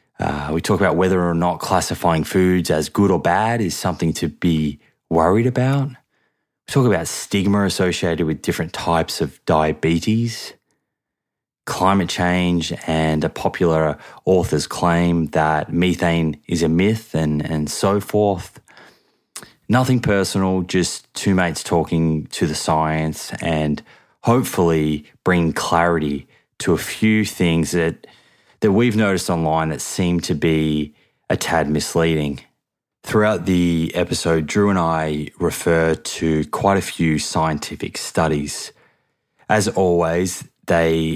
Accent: Australian